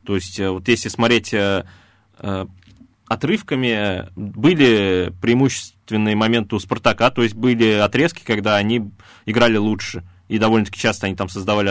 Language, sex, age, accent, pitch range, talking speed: Russian, male, 20-39, native, 100-125 Hz, 140 wpm